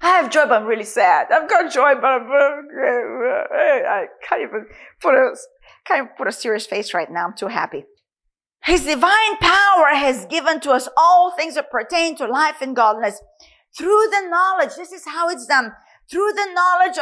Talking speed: 175 wpm